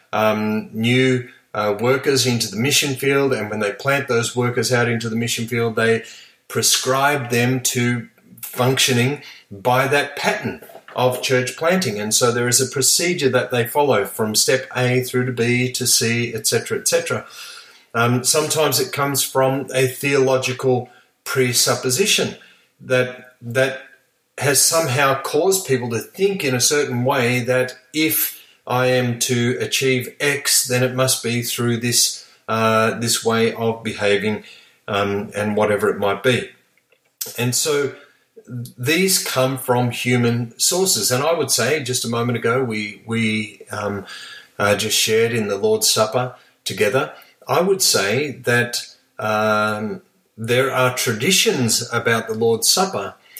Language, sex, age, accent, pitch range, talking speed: English, male, 40-59, Australian, 115-135 Hz, 150 wpm